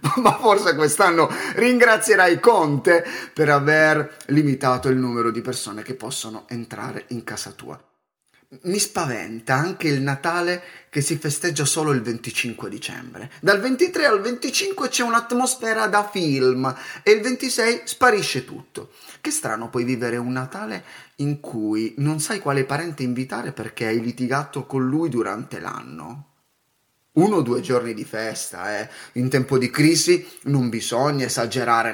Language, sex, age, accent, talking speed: Italian, male, 30-49, native, 145 wpm